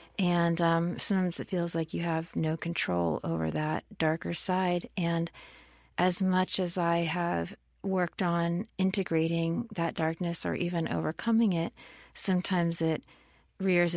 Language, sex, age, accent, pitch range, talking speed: English, female, 40-59, American, 160-180 Hz, 140 wpm